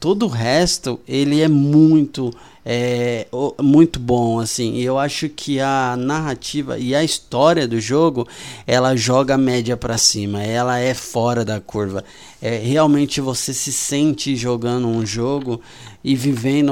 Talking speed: 145 wpm